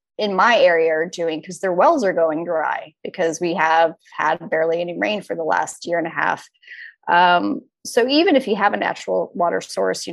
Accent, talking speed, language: American, 215 wpm, English